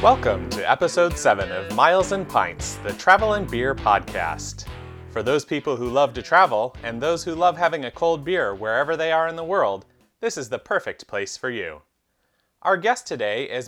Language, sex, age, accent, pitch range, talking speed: English, male, 30-49, American, 125-180 Hz, 195 wpm